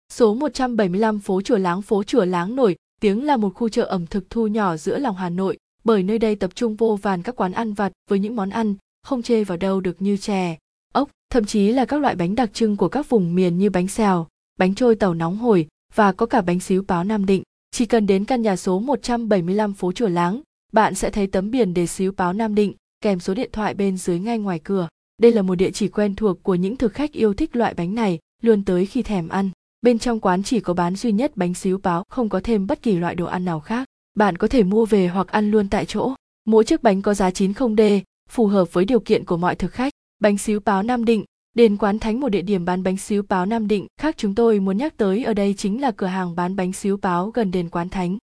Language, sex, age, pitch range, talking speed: Vietnamese, female, 20-39, 185-230 Hz, 255 wpm